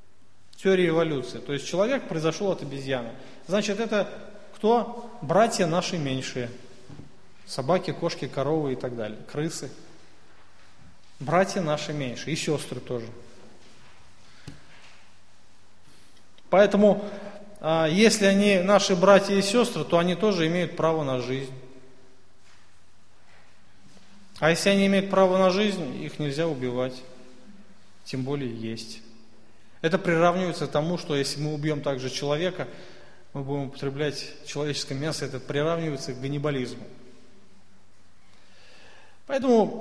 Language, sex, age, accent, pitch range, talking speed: Russian, male, 30-49, native, 125-180 Hz, 110 wpm